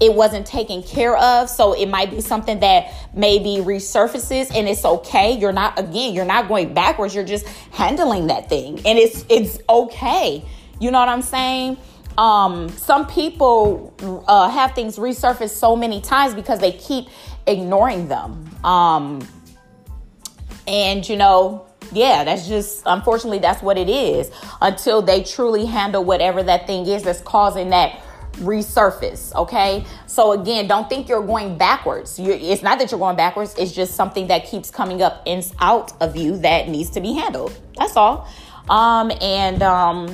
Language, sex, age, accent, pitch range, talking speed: English, female, 20-39, American, 190-245 Hz, 165 wpm